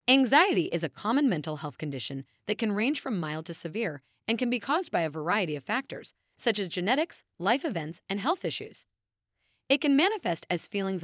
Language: English